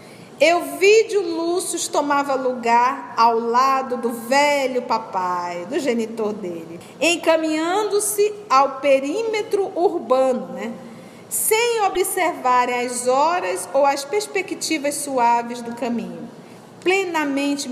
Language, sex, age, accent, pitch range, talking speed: Portuguese, female, 50-69, Brazilian, 225-290 Hz, 95 wpm